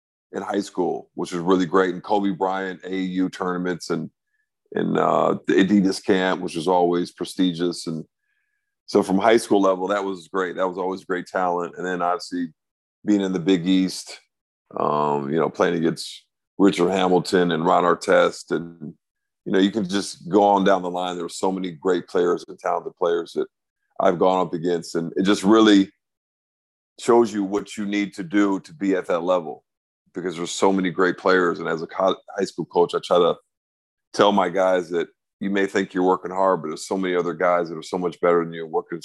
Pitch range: 90-100 Hz